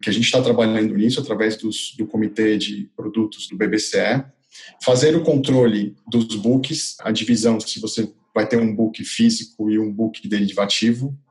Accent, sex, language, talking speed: Brazilian, male, Portuguese, 170 wpm